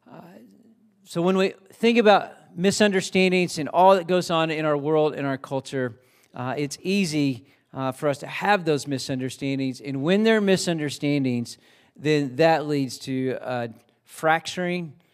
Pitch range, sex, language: 140-180 Hz, male, English